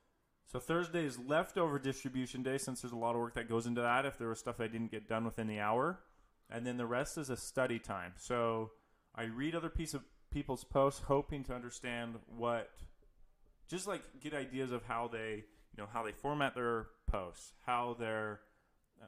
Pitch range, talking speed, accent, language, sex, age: 110-130 Hz, 200 wpm, American, English, male, 20-39